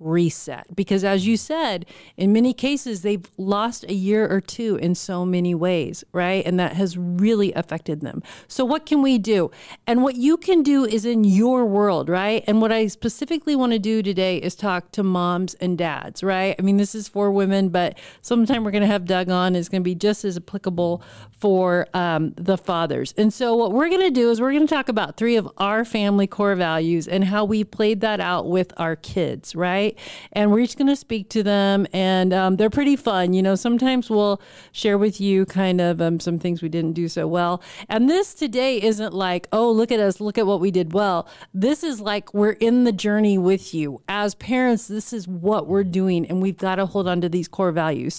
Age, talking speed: 40-59, 225 wpm